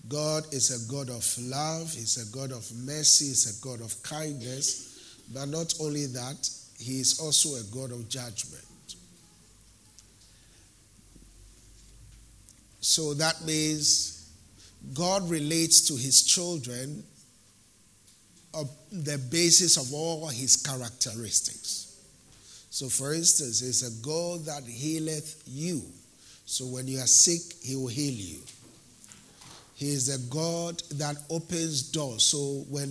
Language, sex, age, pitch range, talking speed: English, male, 50-69, 120-160 Hz, 125 wpm